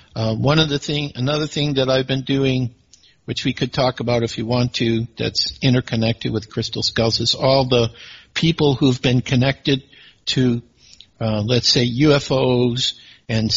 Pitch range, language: 120-145 Hz, English